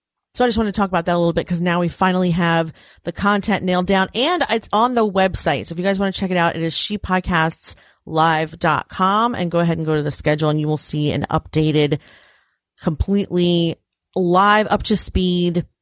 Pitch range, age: 155-205 Hz, 30-49